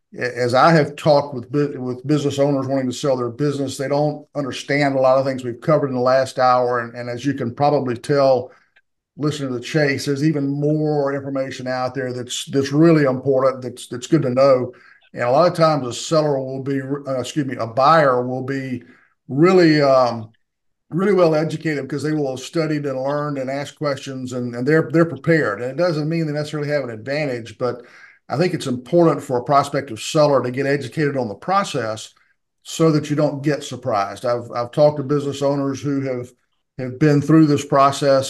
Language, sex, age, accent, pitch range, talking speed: English, male, 50-69, American, 125-145 Hz, 205 wpm